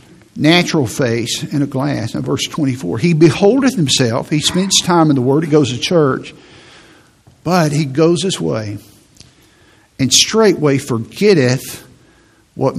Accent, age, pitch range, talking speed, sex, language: American, 50-69, 120-155 Hz, 140 wpm, male, English